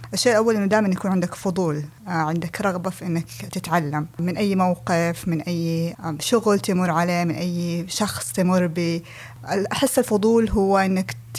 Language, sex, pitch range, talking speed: Arabic, female, 175-210 Hz, 155 wpm